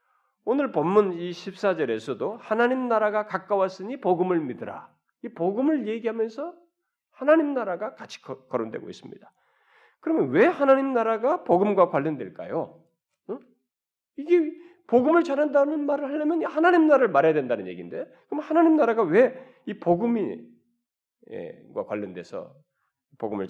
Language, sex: Korean, male